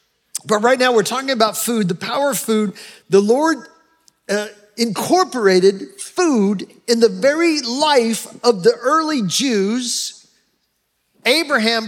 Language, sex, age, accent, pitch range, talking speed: English, male, 40-59, American, 200-250 Hz, 125 wpm